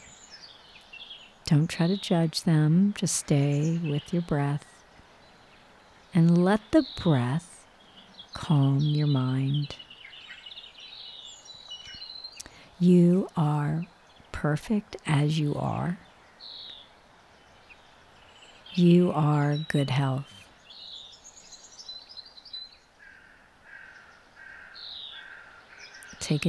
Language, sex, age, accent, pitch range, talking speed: English, female, 50-69, American, 140-165 Hz, 65 wpm